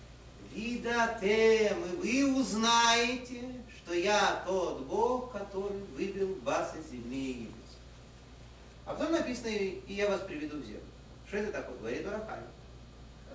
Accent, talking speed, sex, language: native, 125 wpm, male, Russian